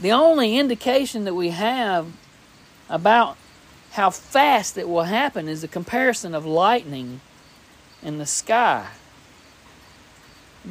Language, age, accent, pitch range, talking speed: English, 50-69, American, 155-220 Hz, 120 wpm